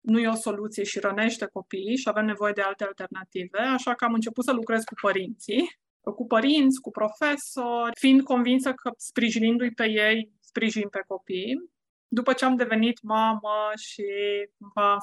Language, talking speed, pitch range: Romanian, 165 wpm, 205-235 Hz